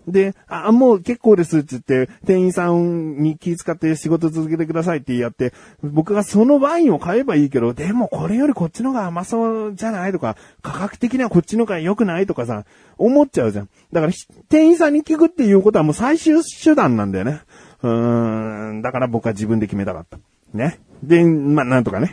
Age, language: 30-49, Japanese